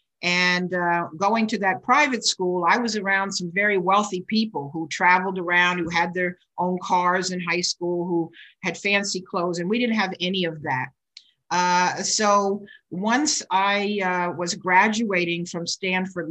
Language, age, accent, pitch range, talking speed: English, 50-69, American, 170-195 Hz, 165 wpm